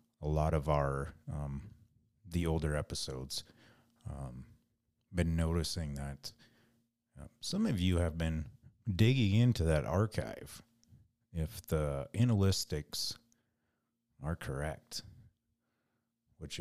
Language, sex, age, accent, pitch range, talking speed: English, male, 30-49, American, 80-115 Hz, 100 wpm